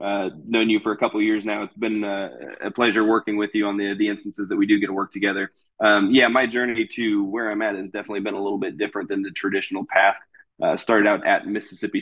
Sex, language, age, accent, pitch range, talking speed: male, English, 20-39, American, 100-110 Hz, 260 wpm